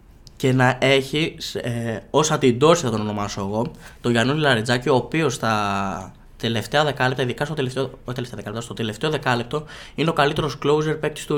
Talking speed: 165 wpm